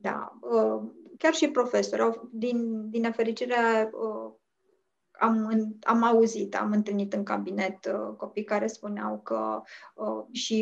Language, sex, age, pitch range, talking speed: Romanian, female, 20-39, 200-235 Hz, 105 wpm